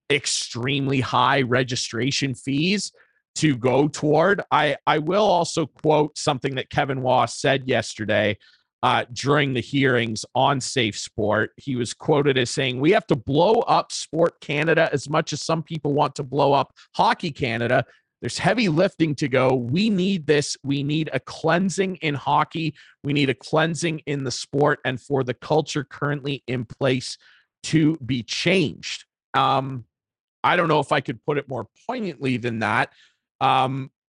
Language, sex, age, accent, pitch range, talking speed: English, male, 40-59, American, 130-160 Hz, 165 wpm